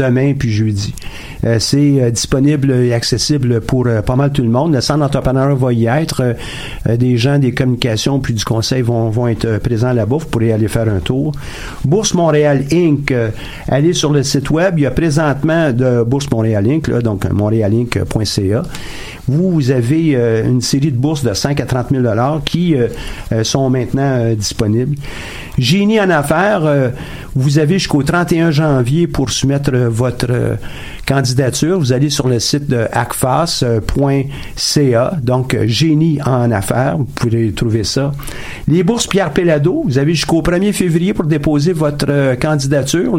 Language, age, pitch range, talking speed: French, 50-69, 120-150 Hz, 160 wpm